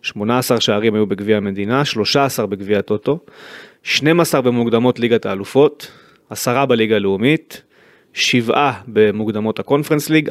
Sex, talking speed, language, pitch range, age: male, 110 wpm, Hebrew, 110-160 Hz, 30-49